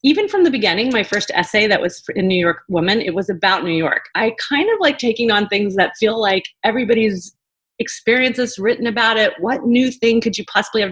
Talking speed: 220 wpm